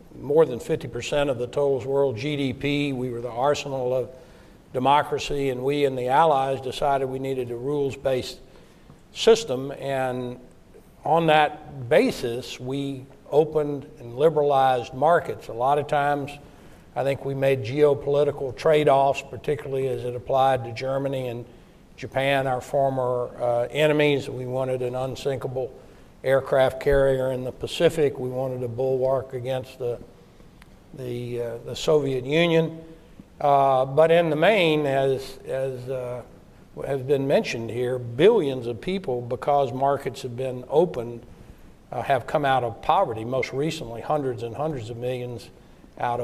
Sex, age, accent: male, 60-79, American